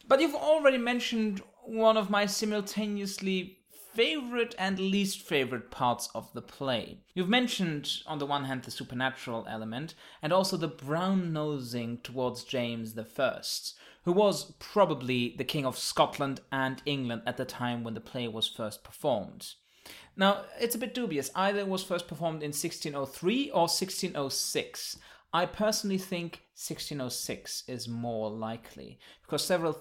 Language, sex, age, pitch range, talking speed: English, male, 30-49, 125-190 Hz, 145 wpm